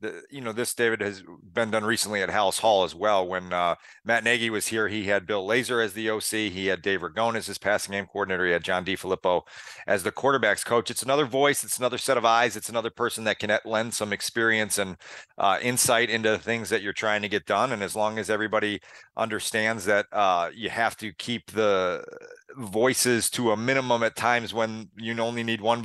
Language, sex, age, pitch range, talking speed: English, male, 40-59, 100-120 Hz, 220 wpm